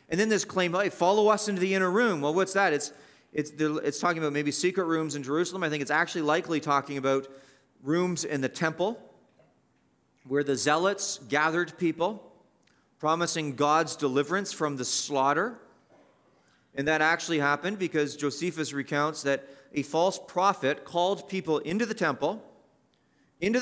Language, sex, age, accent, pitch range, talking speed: English, male, 40-59, American, 145-180 Hz, 160 wpm